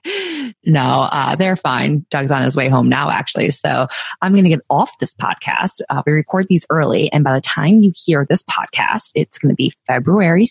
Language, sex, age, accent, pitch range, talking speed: English, female, 20-39, American, 140-175 Hz, 210 wpm